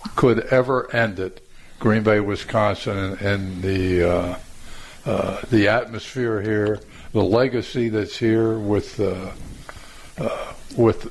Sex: male